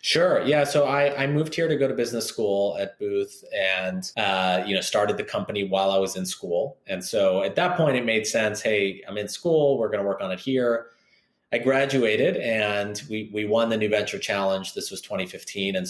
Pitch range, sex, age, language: 95-120 Hz, male, 30-49, English